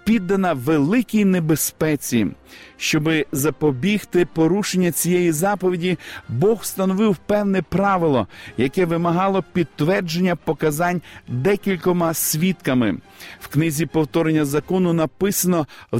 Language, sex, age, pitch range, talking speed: Ukrainian, male, 50-69, 160-195 Hz, 90 wpm